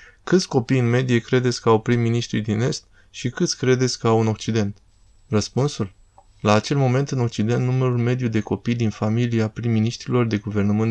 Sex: male